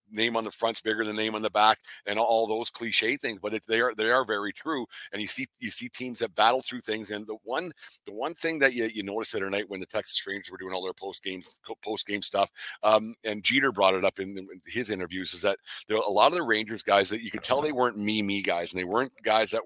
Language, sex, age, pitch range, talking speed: English, male, 50-69, 95-110 Hz, 275 wpm